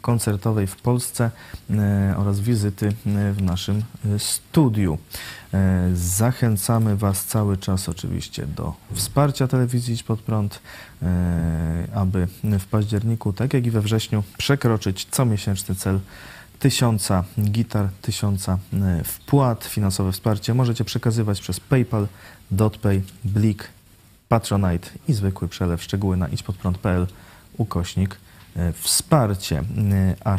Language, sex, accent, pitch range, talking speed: Polish, male, native, 95-110 Hz, 110 wpm